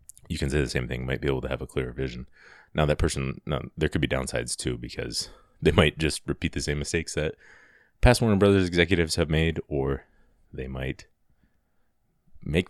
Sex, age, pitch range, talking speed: male, 30-49, 70-80 Hz, 200 wpm